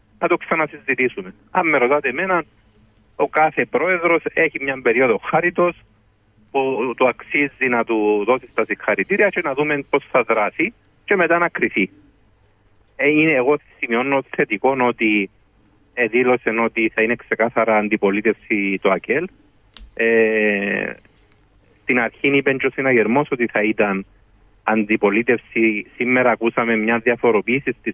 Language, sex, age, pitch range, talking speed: Greek, male, 40-59, 105-125 Hz, 120 wpm